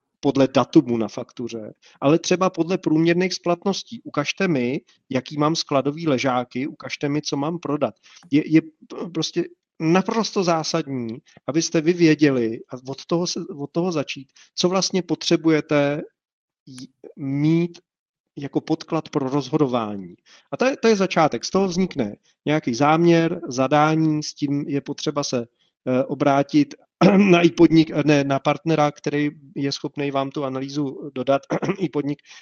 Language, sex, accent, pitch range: Czech, male, native, 140-165 Hz